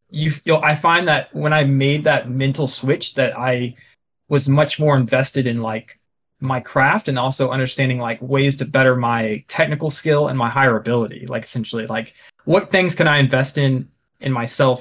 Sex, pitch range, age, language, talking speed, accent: male, 125-150 Hz, 20-39, English, 180 wpm, American